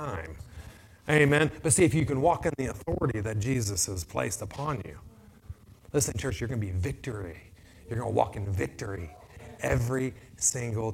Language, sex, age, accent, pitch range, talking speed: English, male, 30-49, American, 100-130 Hz, 185 wpm